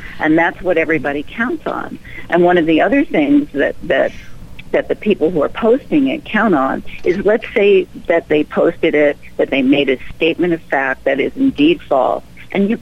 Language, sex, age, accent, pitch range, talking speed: English, female, 50-69, American, 140-200 Hz, 200 wpm